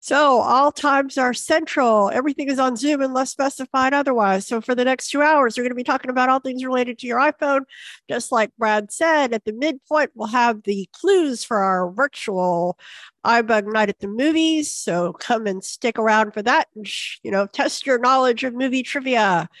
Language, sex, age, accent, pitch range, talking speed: English, female, 50-69, American, 225-290 Hz, 200 wpm